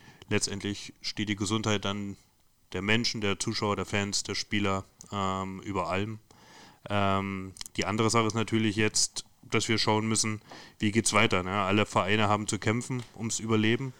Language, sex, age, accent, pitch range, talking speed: German, male, 30-49, German, 105-115 Hz, 160 wpm